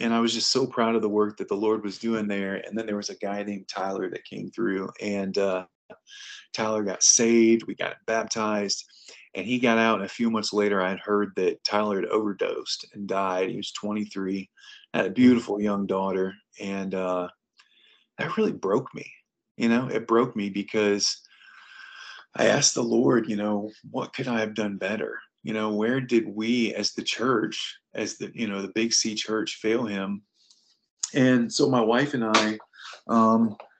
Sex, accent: male, American